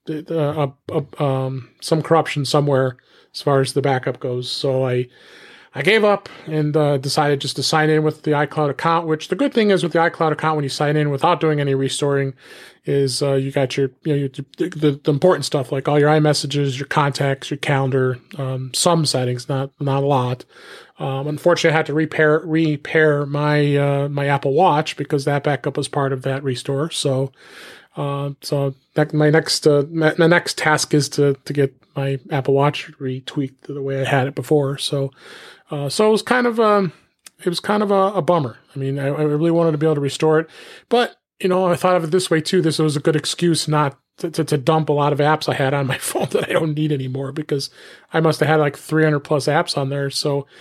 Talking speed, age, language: 220 wpm, 30-49, English